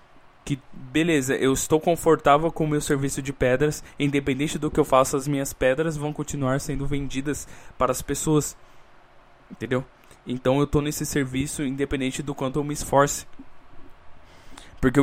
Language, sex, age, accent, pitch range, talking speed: Portuguese, male, 10-29, Brazilian, 125-145 Hz, 155 wpm